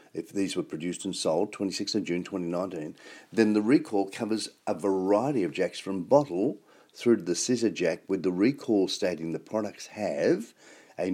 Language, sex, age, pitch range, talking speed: English, male, 50-69, 90-110 Hz, 180 wpm